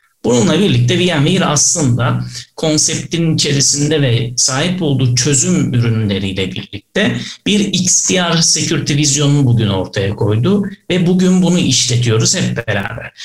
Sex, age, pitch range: male, 60-79, 120-155 Hz